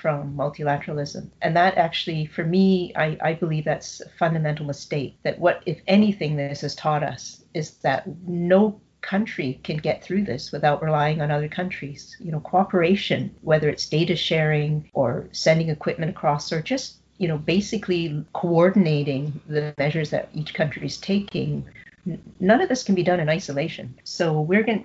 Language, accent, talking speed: English, American, 170 wpm